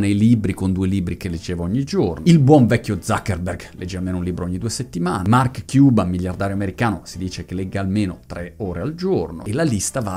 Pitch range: 100-120 Hz